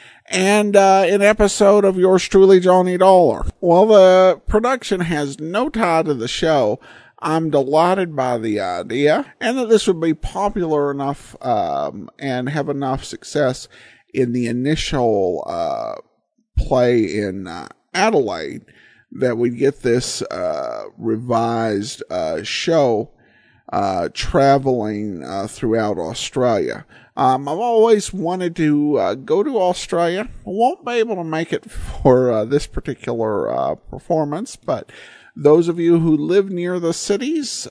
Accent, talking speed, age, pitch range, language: American, 140 wpm, 50-69, 130-205 Hz, English